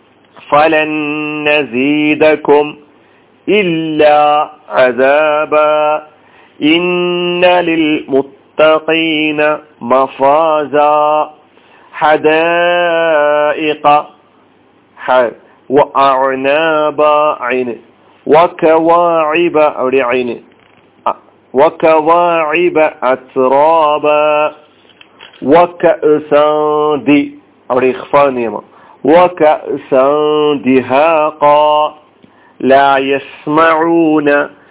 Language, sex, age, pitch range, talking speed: Malayalam, male, 50-69, 140-155 Hz, 35 wpm